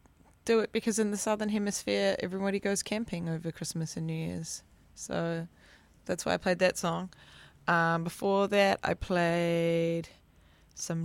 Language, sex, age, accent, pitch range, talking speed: English, female, 20-39, Australian, 160-200 Hz, 150 wpm